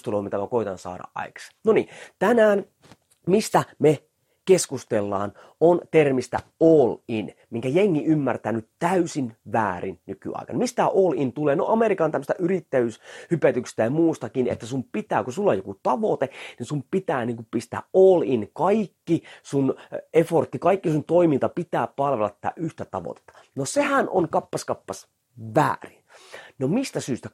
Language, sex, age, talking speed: Finnish, male, 30-49, 150 wpm